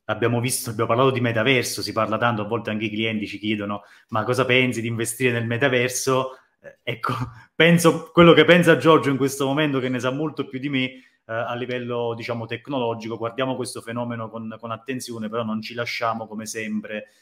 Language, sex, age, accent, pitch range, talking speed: Italian, male, 30-49, native, 110-130 Hz, 195 wpm